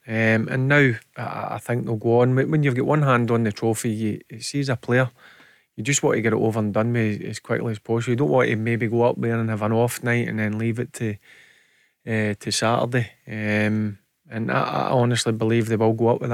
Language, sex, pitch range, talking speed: English, male, 115-130 Hz, 250 wpm